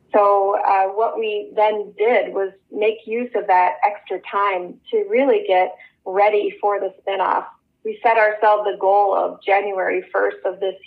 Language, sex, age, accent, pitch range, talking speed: English, female, 30-49, American, 185-230 Hz, 165 wpm